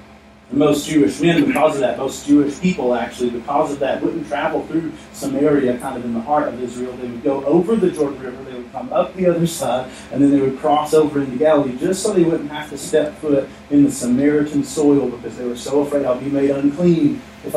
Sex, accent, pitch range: male, American, 140-170 Hz